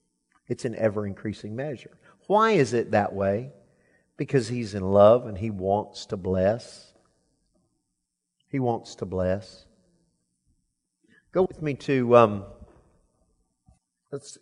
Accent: American